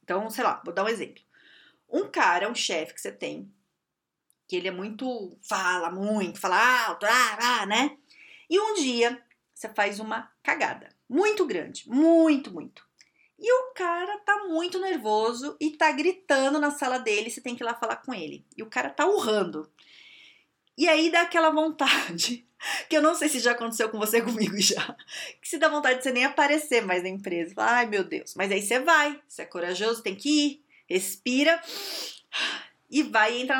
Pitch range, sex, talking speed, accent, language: 235-390 Hz, female, 185 wpm, Brazilian, Portuguese